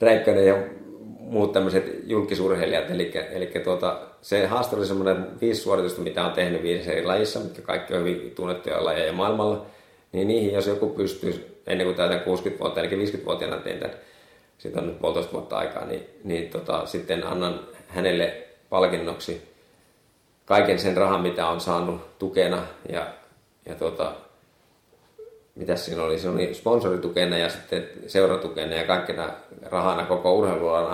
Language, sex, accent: Finnish, male, native